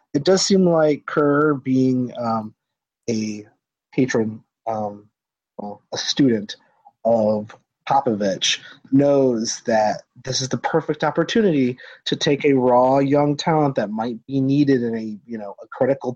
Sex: male